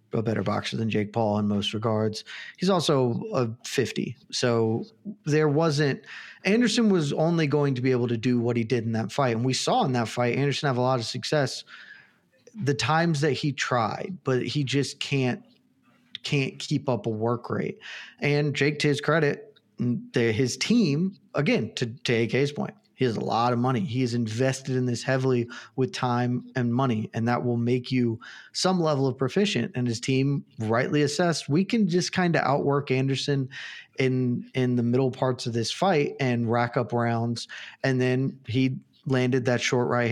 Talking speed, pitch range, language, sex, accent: 190 wpm, 120-145 Hz, English, male, American